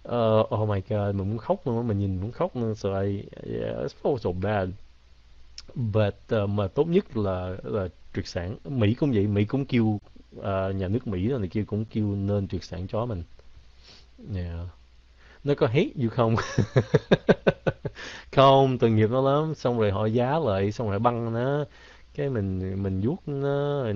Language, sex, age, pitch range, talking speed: Vietnamese, male, 20-39, 95-130 Hz, 190 wpm